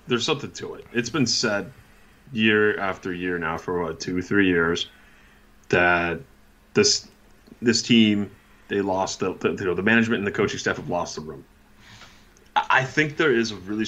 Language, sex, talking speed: English, male, 180 wpm